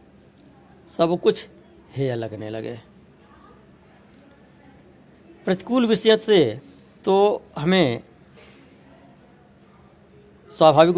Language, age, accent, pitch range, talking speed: Hindi, 60-79, native, 110-180 Hz, 60 wpm